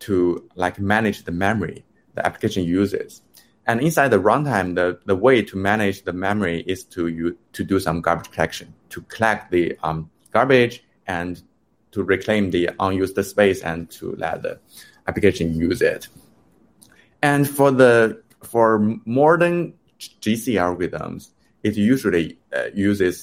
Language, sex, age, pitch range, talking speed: English, male, 20-39, 90-115 Hz, 145 wpm